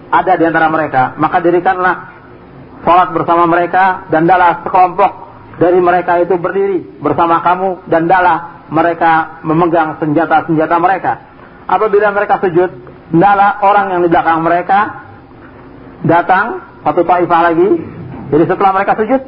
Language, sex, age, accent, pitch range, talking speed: Indonesian, male, 40-59, native, 155-205 Hz, 130 wpm